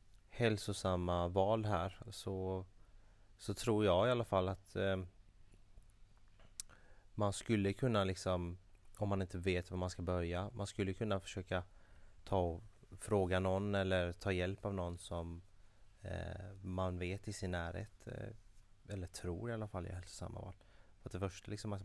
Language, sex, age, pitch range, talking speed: Swedish, male, 30-49, 90-105 Hz, 160 wpm